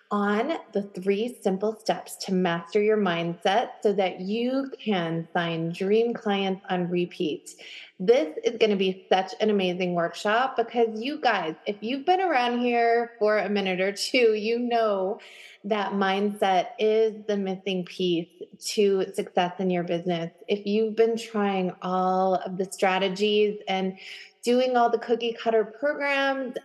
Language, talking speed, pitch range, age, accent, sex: English, 155 wpm, 190-230 Hz, 20-39, American, female